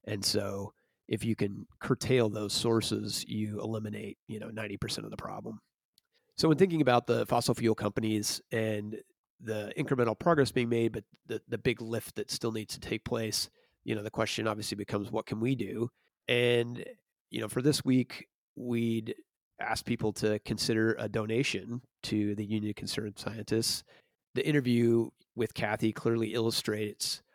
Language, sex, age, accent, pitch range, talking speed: English, male, 30-49, American, 110-125 Hz, 165 wpm